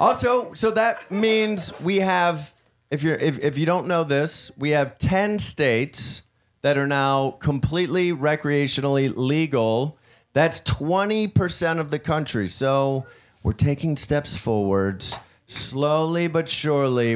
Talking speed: 130 wpm